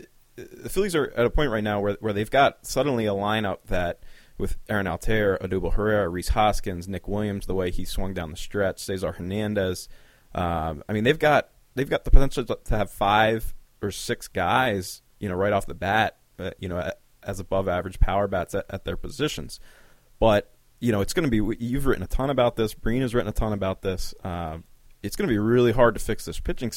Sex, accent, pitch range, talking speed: male, American, 90-110 Hz, 220 wpm